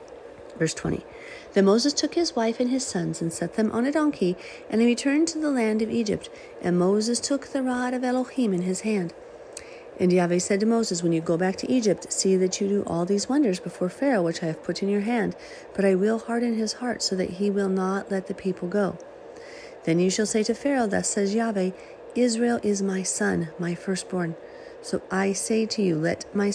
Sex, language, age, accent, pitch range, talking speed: female, English, 40-59, American, 180-255 Hz, 220 wpm